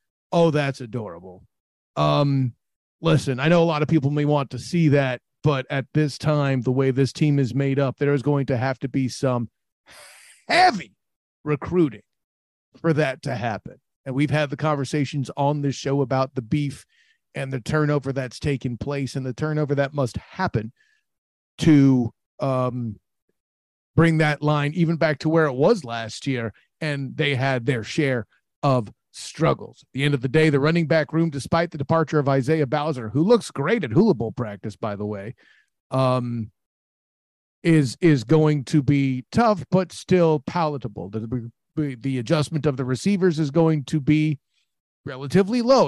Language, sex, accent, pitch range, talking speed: English, male, American, 130-155 Hz, 175 wpm